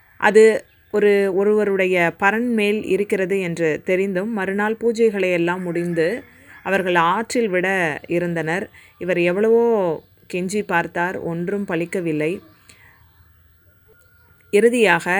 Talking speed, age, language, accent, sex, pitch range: 85 wpm, 20-39, Tamil, native, female, 165-210 Hz